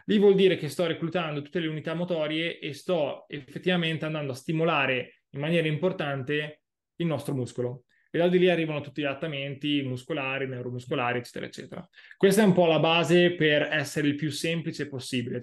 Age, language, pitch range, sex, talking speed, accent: 20-39, Italian, 145-170 Hz, male, 180 wpm, native